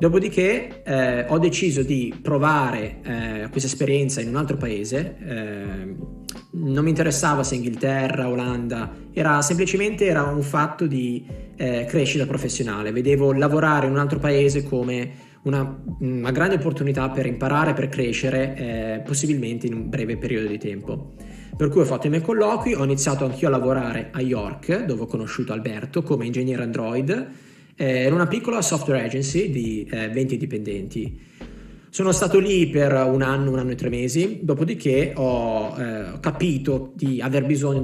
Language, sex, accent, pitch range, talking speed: Italian, male, native, 125-150 Hz, 155 wpm